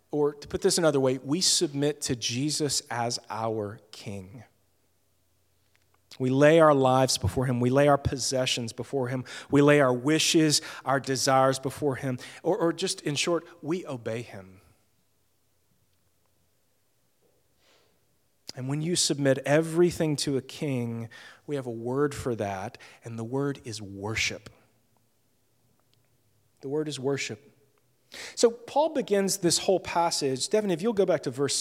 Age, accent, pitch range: 40-59, American, 125-165 Hz